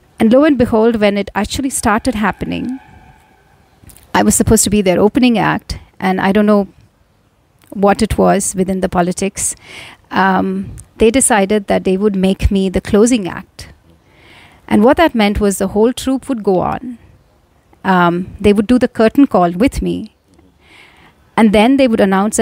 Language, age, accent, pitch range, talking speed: Hindi, 30-49, native, 190-235 Hz, 170 wpm